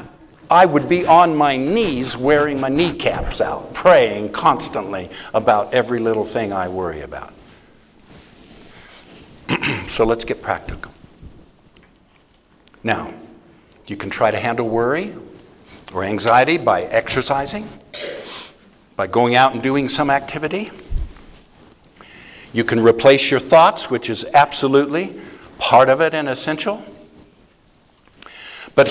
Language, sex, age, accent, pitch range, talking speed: English, male, 60-79, American, 120-180 Hz, 115 wpm